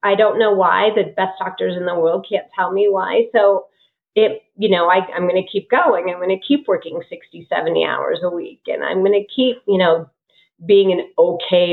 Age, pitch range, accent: 30-49, 180-260 Hz, American